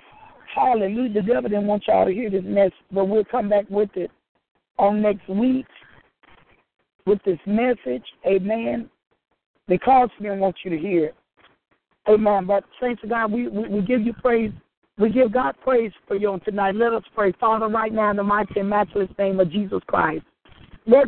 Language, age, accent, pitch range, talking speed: English, 60-79, American, 205-260 Hz, 190 wpm